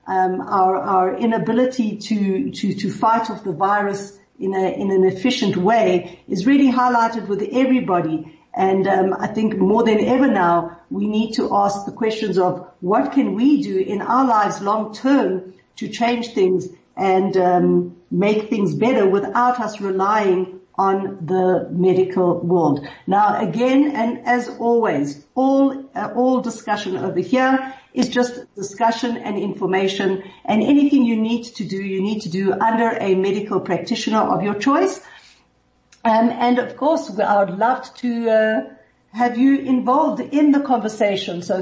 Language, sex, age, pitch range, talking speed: English, female, 50-69, 190-245 Hz, 160 wpm